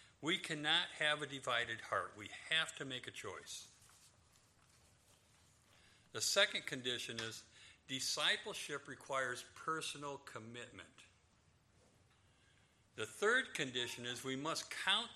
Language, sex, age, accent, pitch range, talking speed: English, male, 50-69, American, 115-155 Hz, 105 wpm